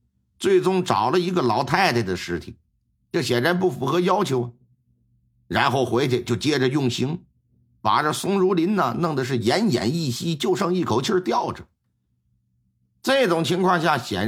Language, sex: Chinese, male